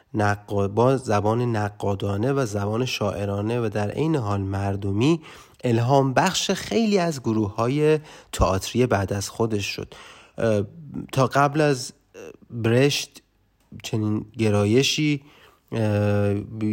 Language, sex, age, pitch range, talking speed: Persian, male, 30-49, 105-135 Hz, 110 wpm